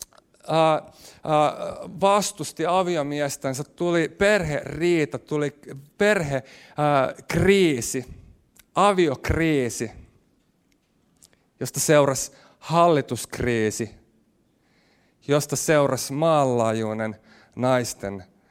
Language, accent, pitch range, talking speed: Finnish, native, 125-170 Hz, 55 wpm